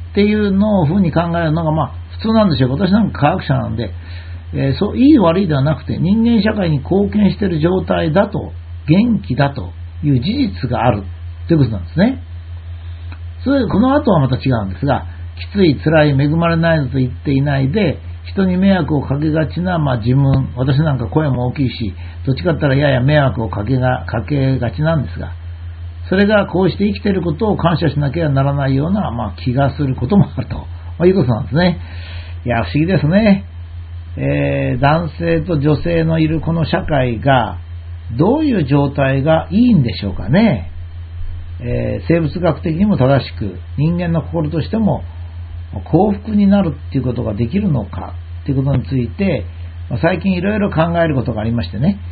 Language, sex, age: Japanese, male, 60-79